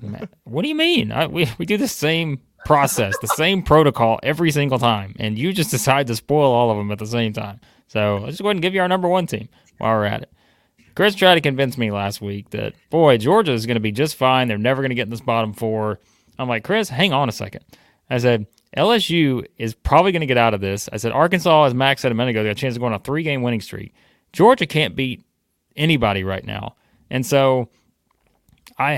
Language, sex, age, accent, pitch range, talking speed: English, male, 30-49, American, 105-135 Hz, 245 wpm